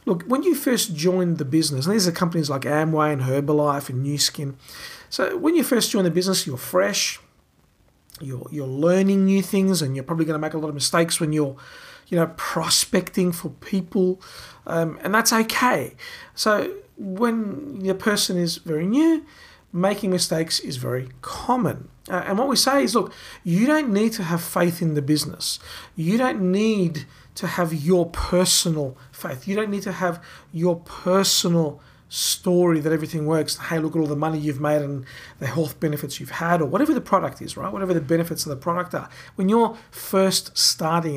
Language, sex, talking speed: English, male, 190 wpm